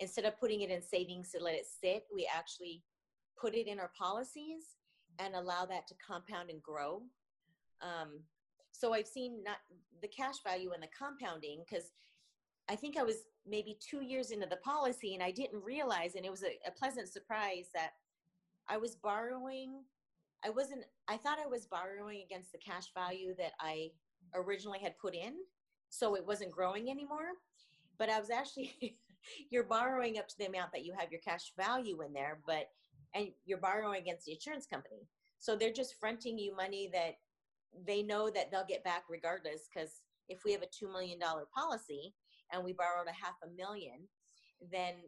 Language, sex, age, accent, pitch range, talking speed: English, female, 30-49, American, 175-235 Hz, 185 wpm